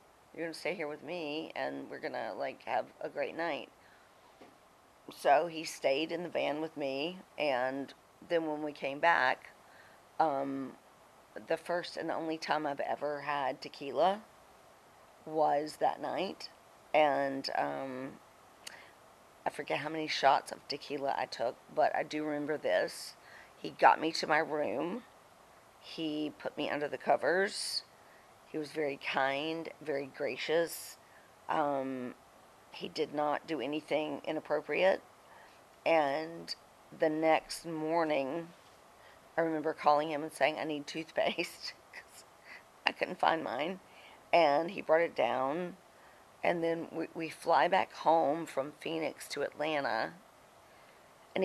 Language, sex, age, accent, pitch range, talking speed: English, female, 40-59, American, 145-165 Hz, 140 wpm